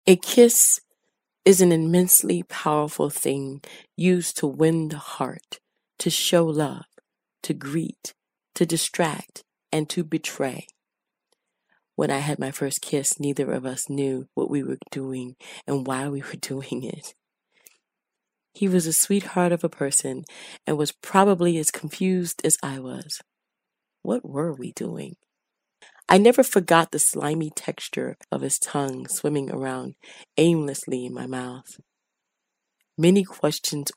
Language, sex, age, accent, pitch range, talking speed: English, female, 30-49, American, 140-175 Hz, 140 wpm